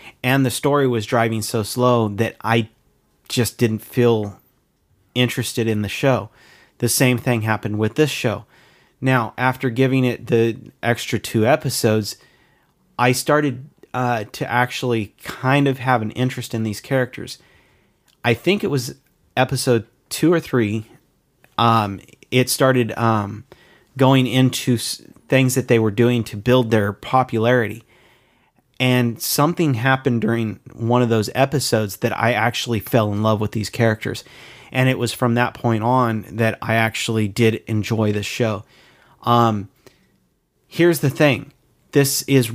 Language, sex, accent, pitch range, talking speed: English, male, American, 110-130 Hz, 145 wpm